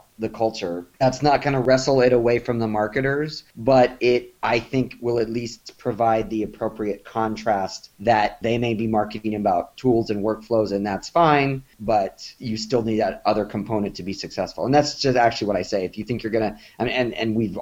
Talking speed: 210 wpm